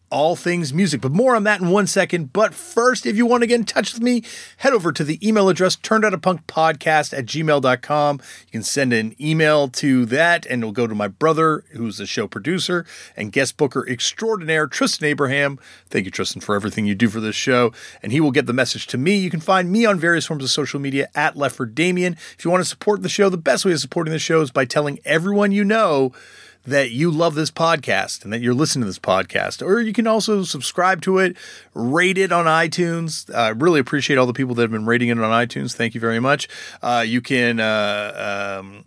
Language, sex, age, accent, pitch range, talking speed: English, male, 30-49, American, 125-180 Hz, 225 wpm